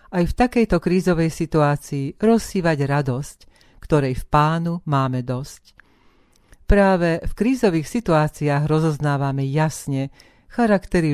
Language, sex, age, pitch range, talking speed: Slovak, female, 40-59, 140-170 Hz, 100 wpm